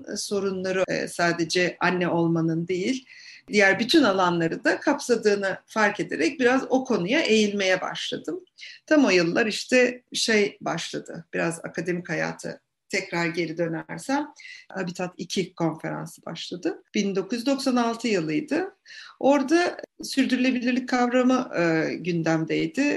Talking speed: 105 wpm